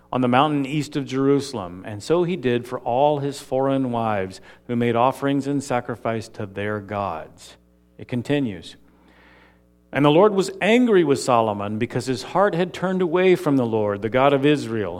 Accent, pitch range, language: American, 105-165 Hz, English